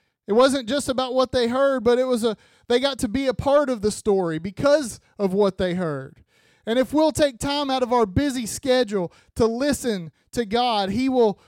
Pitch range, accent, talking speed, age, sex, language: 190-250 Hz, American, 215 wpm, 30-49, male, English